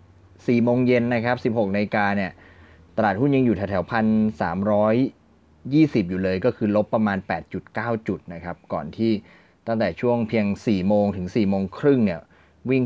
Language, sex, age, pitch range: Thai, male, 20-39, 95-115 Hz